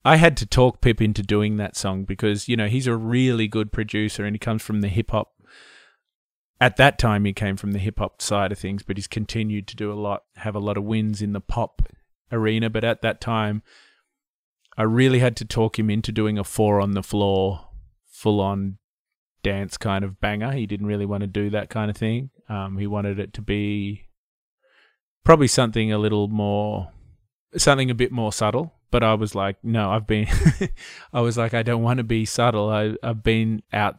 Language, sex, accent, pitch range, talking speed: English, male, Australian, 100-115 Hz, 210 wpm